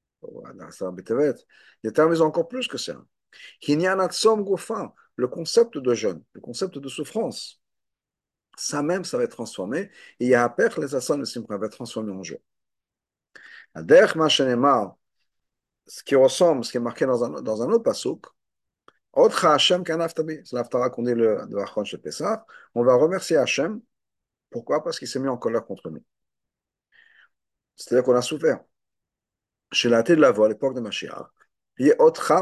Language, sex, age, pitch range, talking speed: French, male, 50-69, 115-170 Hz, 155 wpm